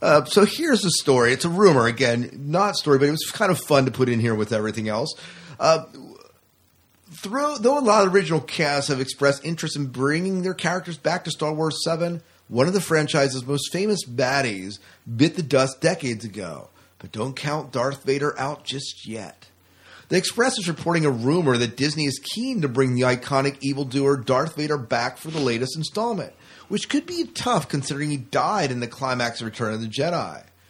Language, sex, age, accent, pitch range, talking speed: English, male, 40-59, American, 120-165 Hz, 200 wpm